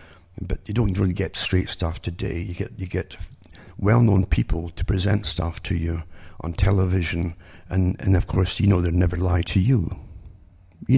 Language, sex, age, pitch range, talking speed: English, male, 60-79, 90-105 Hz, 180 wpm